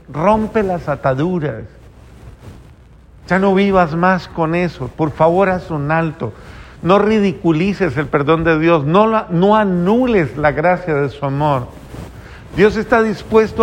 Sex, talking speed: male, 135 wpm